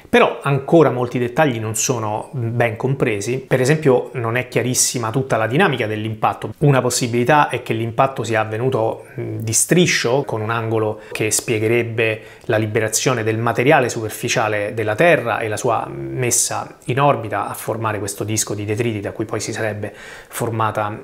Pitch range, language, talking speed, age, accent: 115-140 Hz, Italian, 160 wpm, 30-49, native